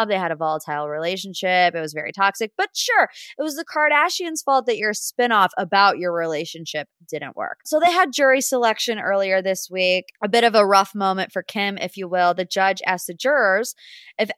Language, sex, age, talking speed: English, female, 20-39, 205 wpm